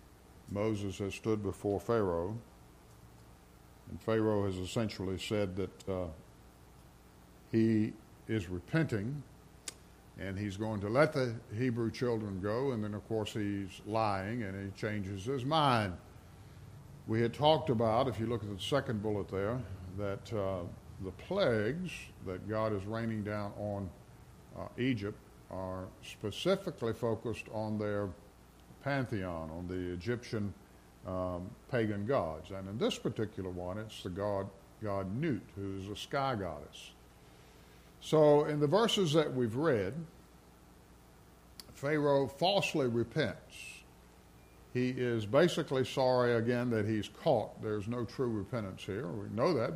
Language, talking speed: English, 135 wpm